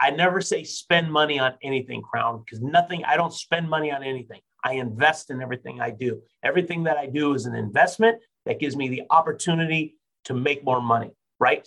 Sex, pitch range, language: male, 130-175 Hz, English